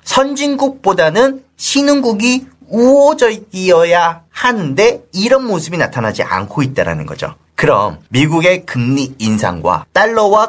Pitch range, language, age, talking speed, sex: 185-270 Hz, English, 40-59, 85 wpm, male